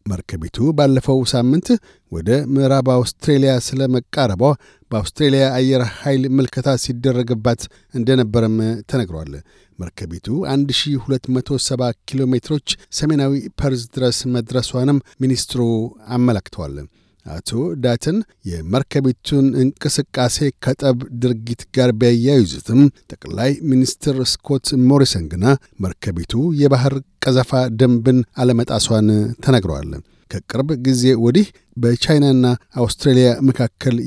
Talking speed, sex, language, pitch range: 90 wpm, male, Amharic, 120-135 Hz